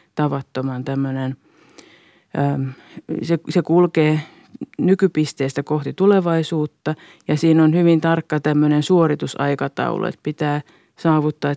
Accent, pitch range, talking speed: native, 150-170 Hz, 100 wpm